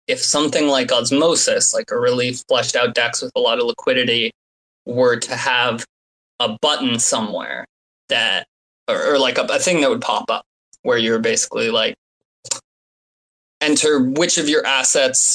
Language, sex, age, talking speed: English, male, 20-39, 165 wpm